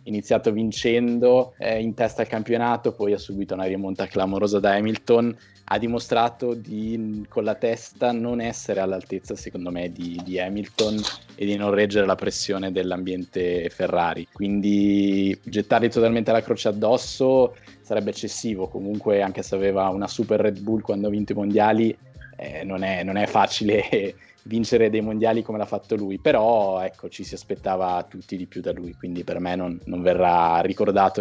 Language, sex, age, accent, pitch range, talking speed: Italian, male, 20-39, native, 95-115 Hz, 170 wpm